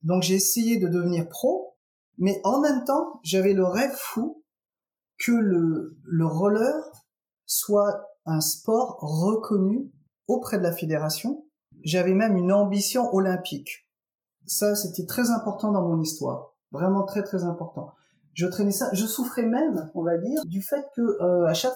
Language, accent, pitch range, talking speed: French, French, 160-230 Hz, 155 wpm